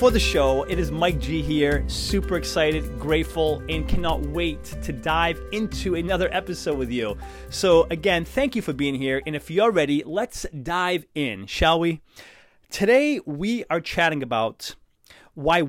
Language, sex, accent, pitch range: English, male, American, 135-185 Hz